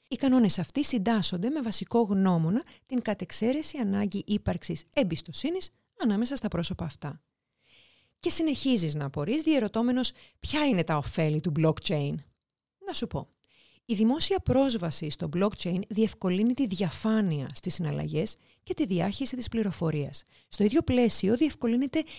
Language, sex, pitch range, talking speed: Greek, female, 175-270 Hz, 135 wpm